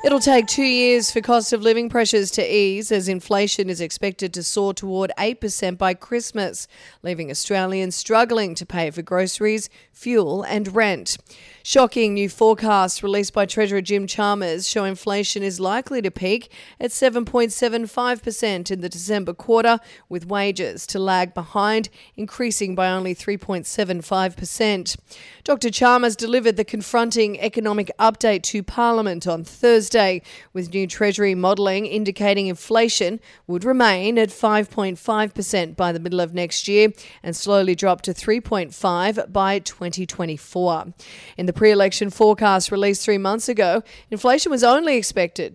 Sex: female